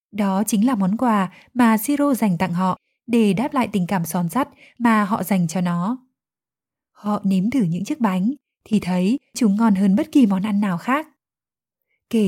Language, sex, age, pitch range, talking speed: Vietnamese, female, 20-39, 185-235 Hz, 195 wpm